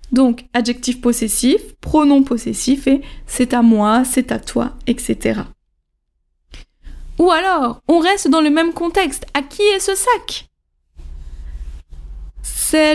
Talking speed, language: 125 wpm, French